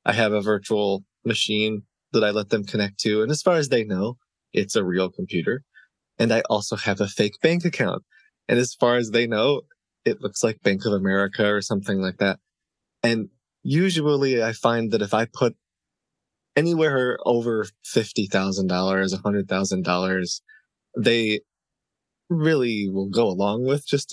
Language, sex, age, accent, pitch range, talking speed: English, male, 20-39, American, 100-125 Hz, 160 wpm